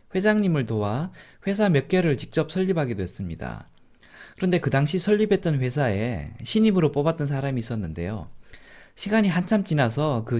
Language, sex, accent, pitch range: Korean, male, native, 115-180 Hz